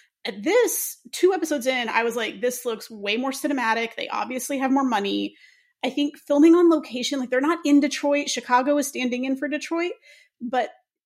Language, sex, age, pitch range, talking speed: English, female, 30-49, 235-310 Hz, 190 wpm